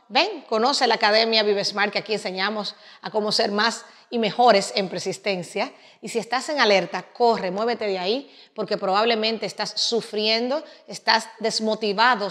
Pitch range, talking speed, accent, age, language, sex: 195-245 Hz, 150 wpm, American, 30-49, Spanish, female